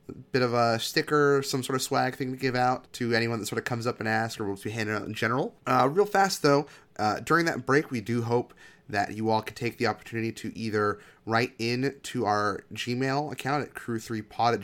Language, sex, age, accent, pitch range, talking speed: English, male, 20-39, American, 105-130 Hz, 240 wpm